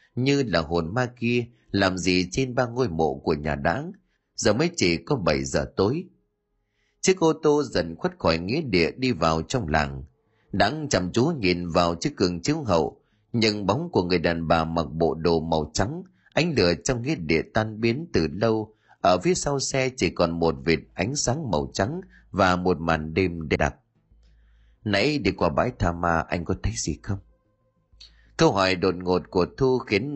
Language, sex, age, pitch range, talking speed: Vietnamese, male, 30-49, 85-115 Hz, 195 wpm